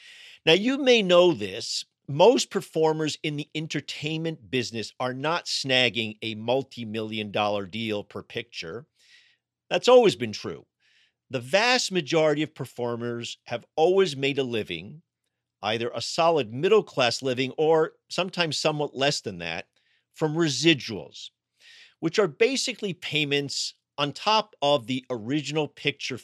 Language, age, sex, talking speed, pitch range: English, 50-69, male, 130 wpm, 125-170 Hz